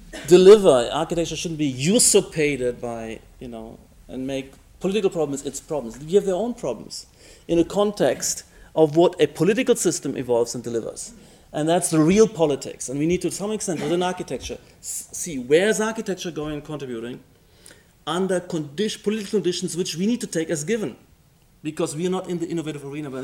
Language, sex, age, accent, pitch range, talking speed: English, male, 30-49, German, 130-180 Hz, 180 wpm